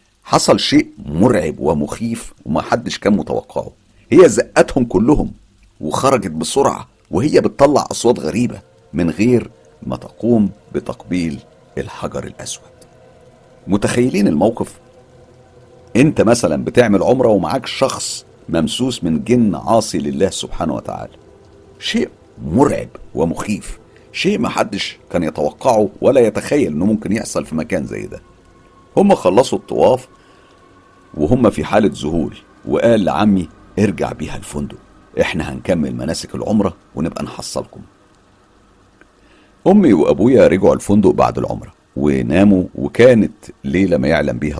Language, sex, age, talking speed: Arabic, male, 50-69, 115 wpm